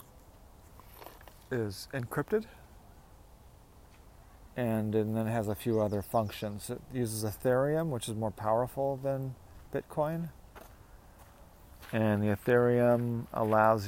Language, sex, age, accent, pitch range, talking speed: English, male, 40-59, American, 95-115 Hz, 105 wpm